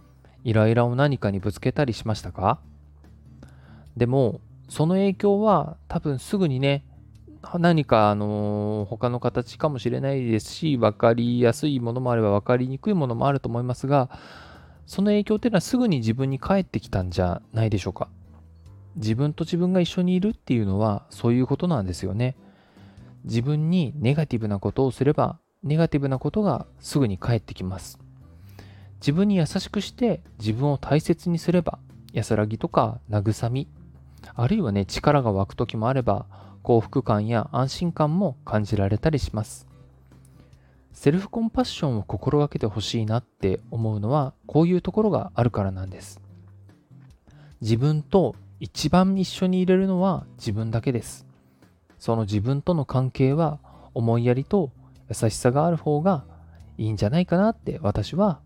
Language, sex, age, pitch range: Japanese, male, 20-39, 100-150 Hz